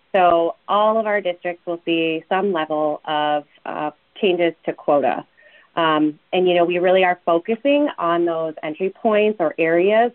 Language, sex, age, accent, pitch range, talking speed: English, female, 30-49, American, 165-185 Hz, 165 wpm